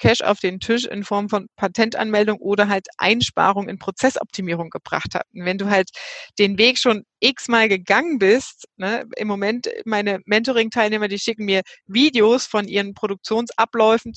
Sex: female